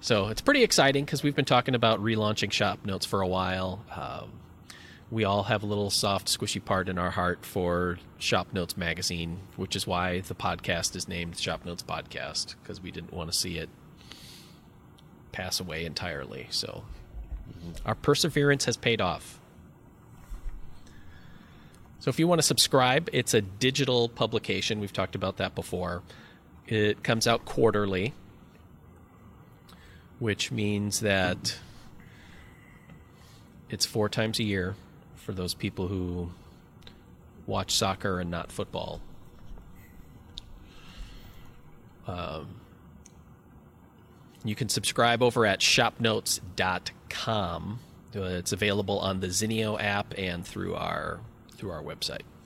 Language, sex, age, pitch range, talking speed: English, male, 30-49, 90-115 Hz, 130 wpm